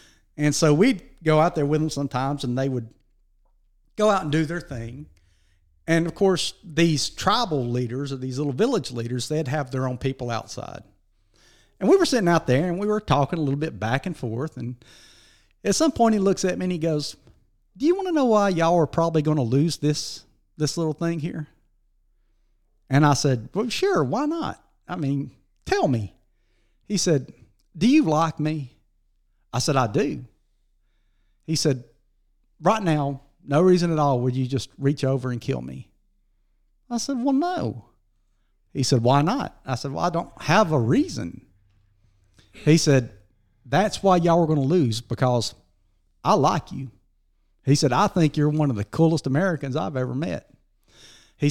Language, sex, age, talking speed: English, male, 40-59, 185 wpm